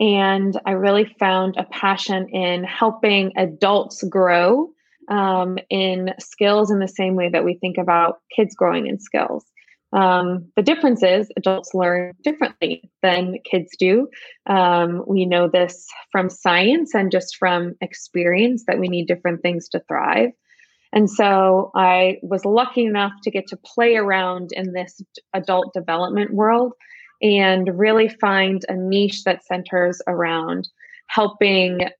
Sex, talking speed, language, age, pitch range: female, 145 wpm, English, 20-39, 180-205 Hz